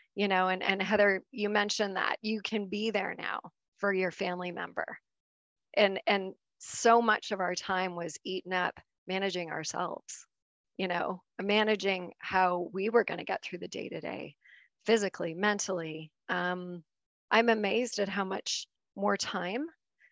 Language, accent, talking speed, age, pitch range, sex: English, American, 150 wpm, 30-49, 190-225 Hz, female